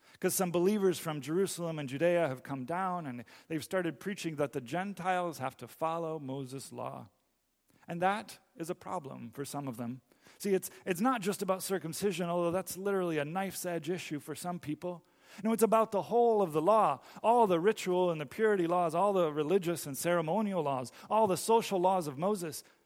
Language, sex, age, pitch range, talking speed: English, male, 40-59, 150-200 Hz, 195 wpm